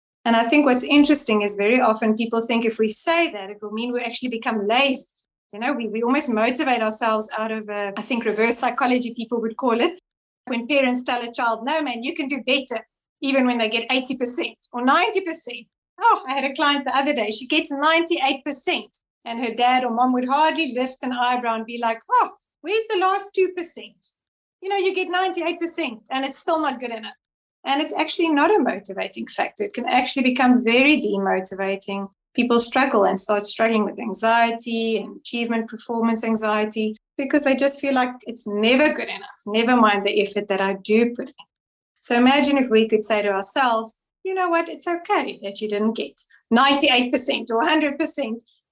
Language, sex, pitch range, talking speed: English, female, 225-295 Hz, 195 wpm